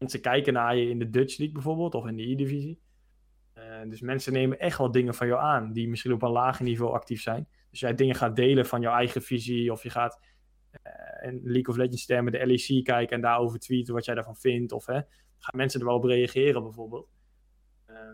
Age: 20-39